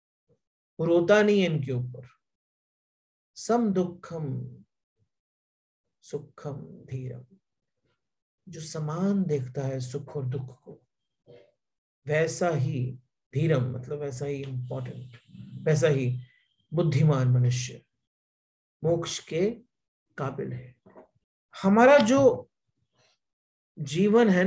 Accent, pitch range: Indian, 140-185 Hz